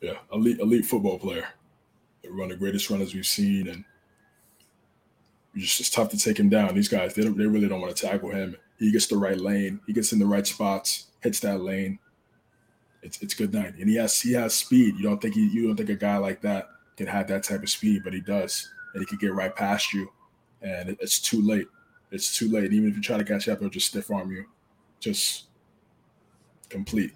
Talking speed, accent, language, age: 230 wpm, American, English, 20-39